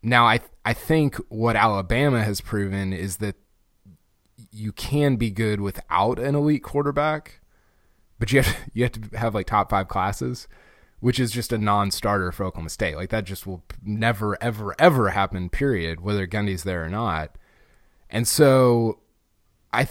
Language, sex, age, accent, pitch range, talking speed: English, male, 20-39, American, 95-125 Hz, 170 wpm